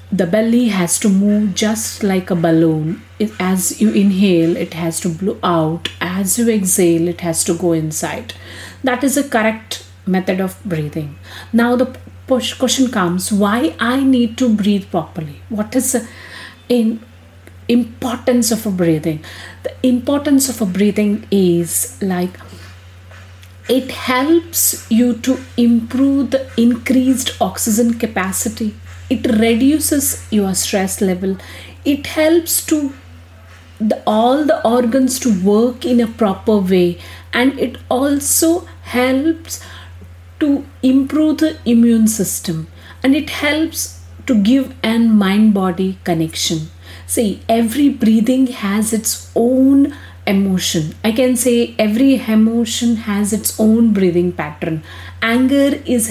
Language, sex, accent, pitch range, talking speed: English, female, Indian, 175-250 Hz, 125 wpm